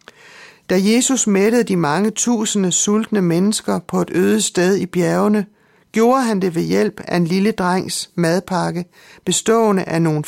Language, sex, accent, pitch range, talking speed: Danish, male, native, 170-210 Hz, 160 wpm